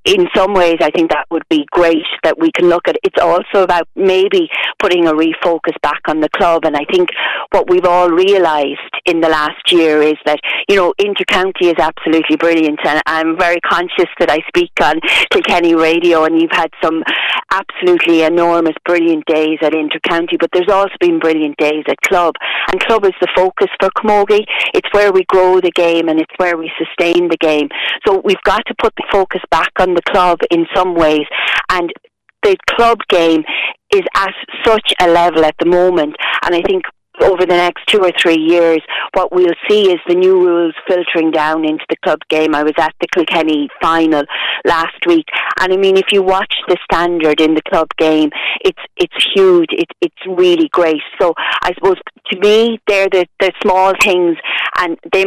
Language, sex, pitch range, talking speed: English, female, 160-200 Hz, 195 wpm